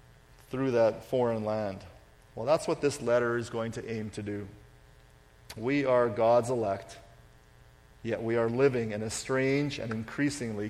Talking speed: 155 wpm